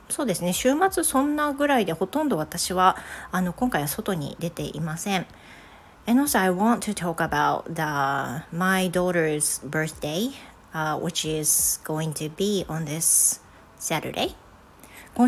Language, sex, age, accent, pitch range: Japanese, female, 40-59, native, 160-205 Hz